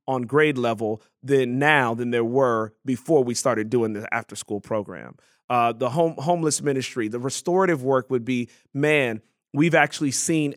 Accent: American